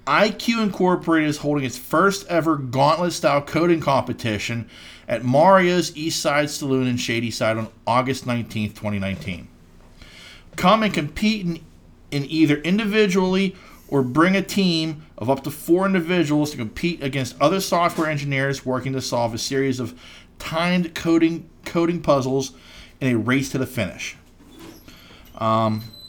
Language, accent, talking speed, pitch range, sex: English, American, 145 wpm, 125-165 Hz, male